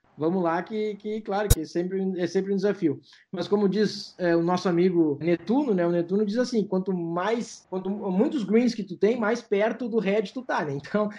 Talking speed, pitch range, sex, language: 210 wpm, 170-210 Hz, male, Portuguese